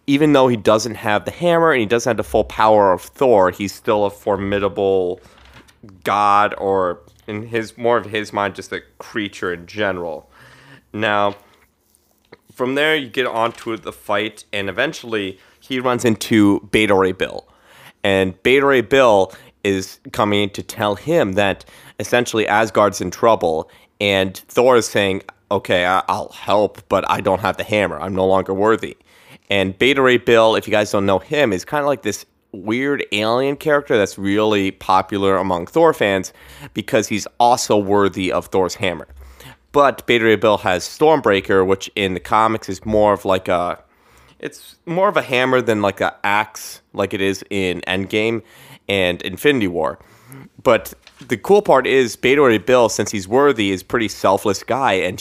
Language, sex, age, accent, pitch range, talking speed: English, male, 30-49, American, 95-120 Hz, 175 wpm